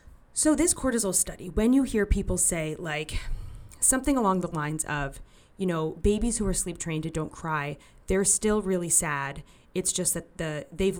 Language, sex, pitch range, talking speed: English, female, 155-190 Hz, 185 wpm